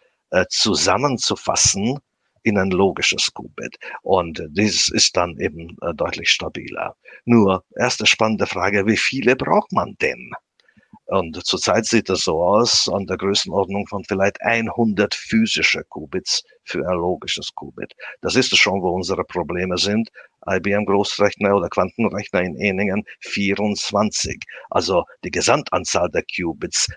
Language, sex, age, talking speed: German, male, 50-69, 130 wpm